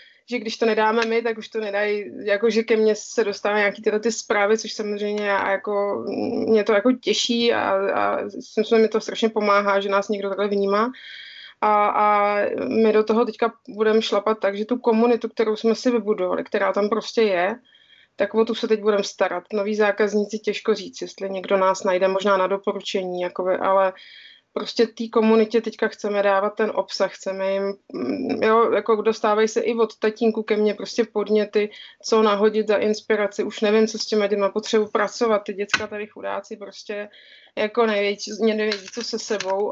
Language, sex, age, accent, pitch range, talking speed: Czech, female, 20-39, native, 200-225 Hz, 190 wpm